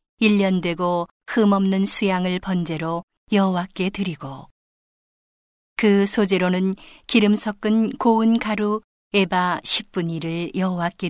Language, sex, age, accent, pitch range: Korean, female, 40-59, native, 175-215 Hz